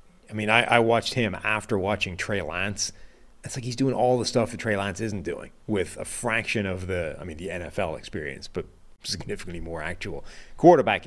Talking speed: 200 wpm